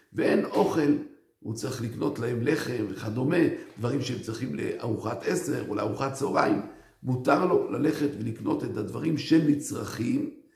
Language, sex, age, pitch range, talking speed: Hebrew, male, 50-69, 120-165 Hz, 130 wpm